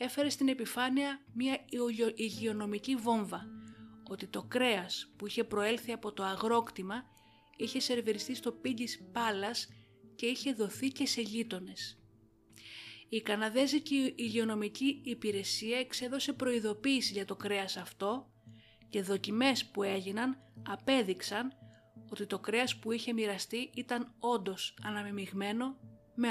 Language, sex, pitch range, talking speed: Greek, female, 195-245 Hz, 115 wpm